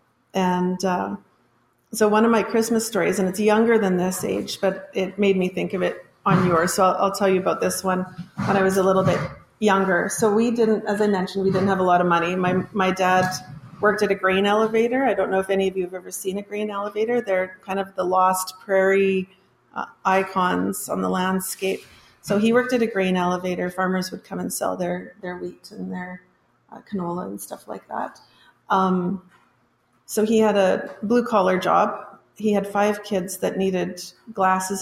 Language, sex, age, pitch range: English, female, 40-59, 185-210 Hz